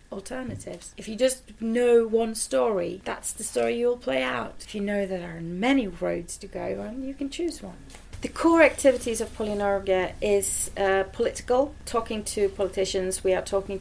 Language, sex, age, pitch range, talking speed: Czech, female, 30-49, 185-220 Hz, 185 wpm